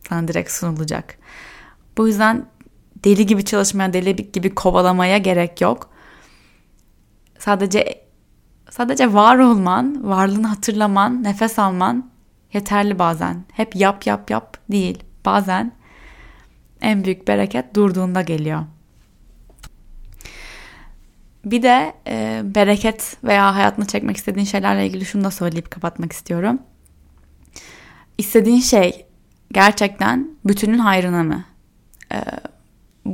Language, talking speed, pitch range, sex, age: Turkish, 100 wpm, 175-220 Hz, female, 10-29